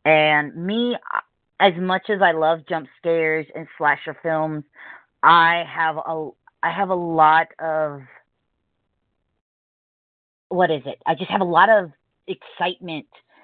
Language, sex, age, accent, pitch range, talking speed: English, female, 40-59, American, 155-195 Hz, 135 wpm